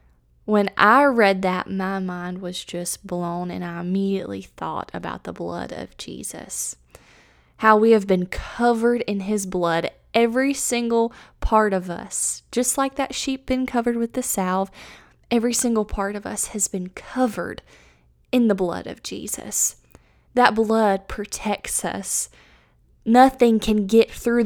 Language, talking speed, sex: English, 150 wpm, female